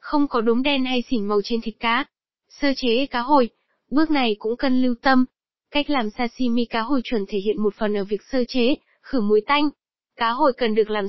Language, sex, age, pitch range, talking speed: Vietnamese, female, 10-29, 220-270 Hz, 225 wpm